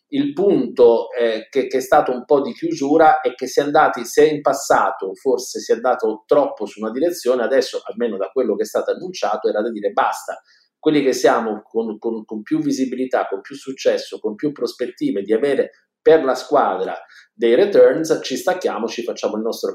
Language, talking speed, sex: Italian, 200 wpm, male